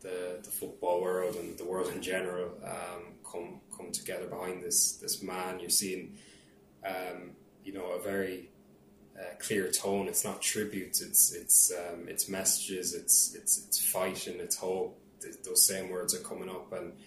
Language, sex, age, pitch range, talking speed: English, male, 20-39, 90-110 Hz, 170 wpm